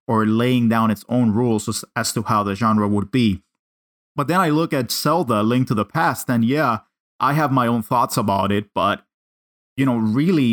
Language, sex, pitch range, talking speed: English, male, 105-130 Hz, 205 wpm